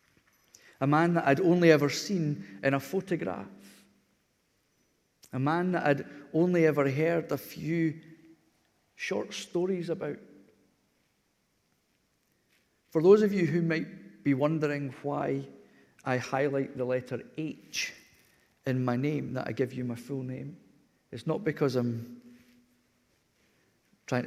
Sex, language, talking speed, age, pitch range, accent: male, English, 125 wpm, 50-69, 125-155 Hz, British